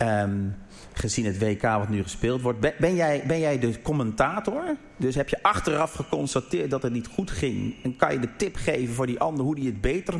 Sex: male